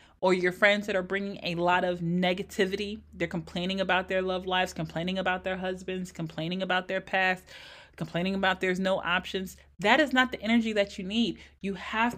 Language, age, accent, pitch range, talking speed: English, 30-49, American, 180-250 Hz, 190 wpm